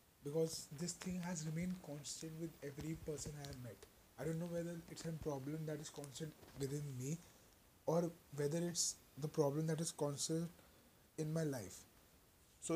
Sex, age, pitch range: male, 20-39, 130-155 Hz